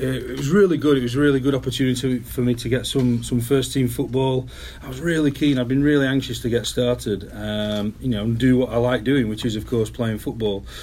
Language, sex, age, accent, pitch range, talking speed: English, male, 40-59, British, 110-130 Hz, 250 wpm